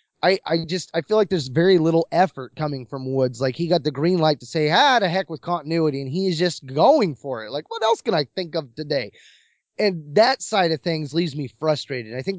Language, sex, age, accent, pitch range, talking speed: English, male, 20-39, American, 140-185 Hz, 245 wpm